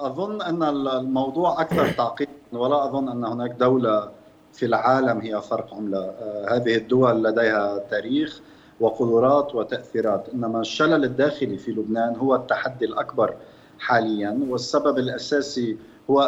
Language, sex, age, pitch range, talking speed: Arabic, male, 50-69, 115-140 Hz, 120 wpm